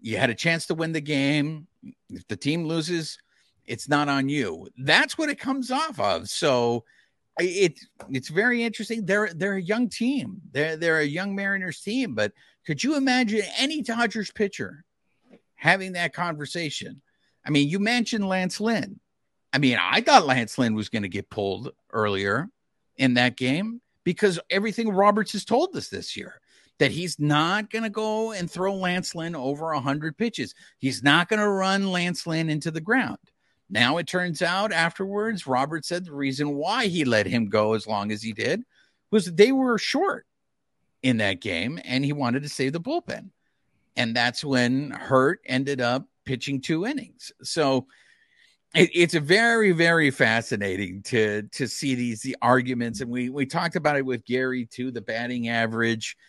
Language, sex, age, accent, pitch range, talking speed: English, male, 50-69, American, 130-205 Hz, 175 wpm